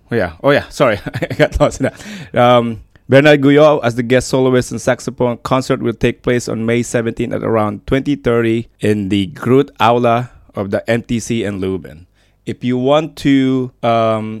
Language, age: English, 20-39